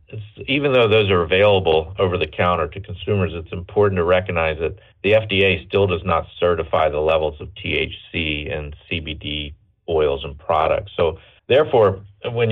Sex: male